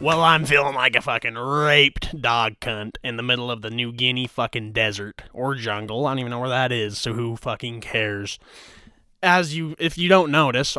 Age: 20-39